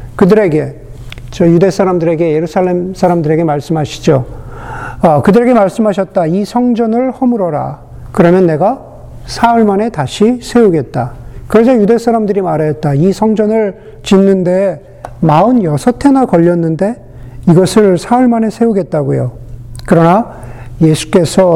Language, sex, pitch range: Korean, male, 160-235 Hz